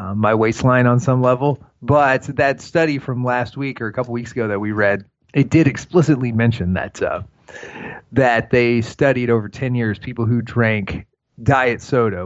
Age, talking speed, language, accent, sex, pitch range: 30-49, 175 wpm, English, American, male, 110-135 Hz